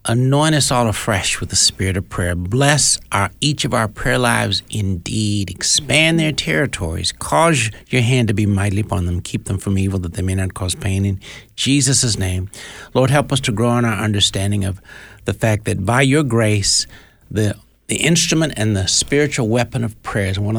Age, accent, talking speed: 60-79, American, 195 wpm